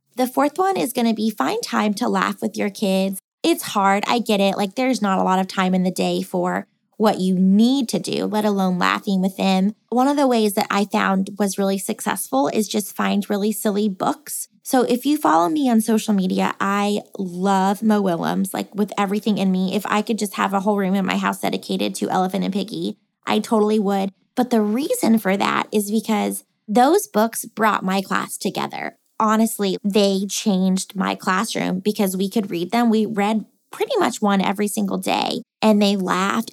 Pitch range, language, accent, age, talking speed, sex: 195-225 Hz, English, American, 20-39, 205 wpm, female